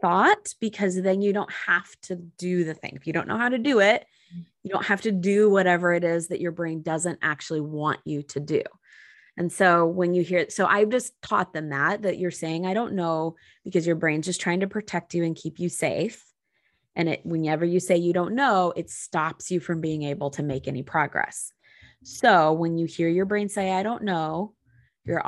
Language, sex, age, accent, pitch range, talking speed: English, female, 20-39, American, 165-205 Hz, 220 wpm